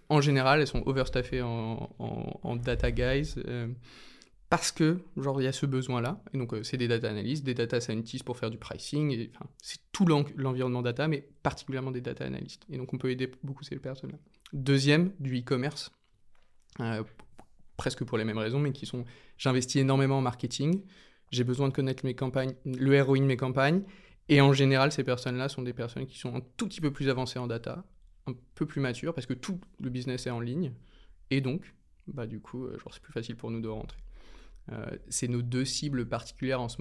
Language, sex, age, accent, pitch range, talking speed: French, male, 20-39, French, 120-140 Hz, 195 wpm